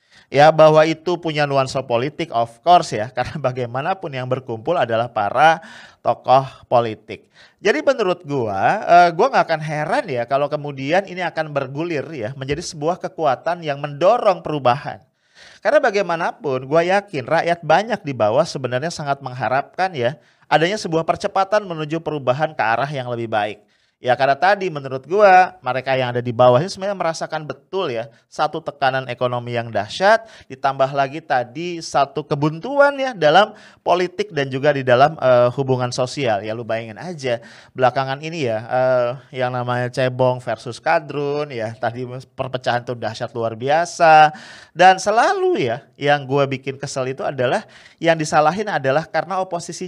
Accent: Indonesian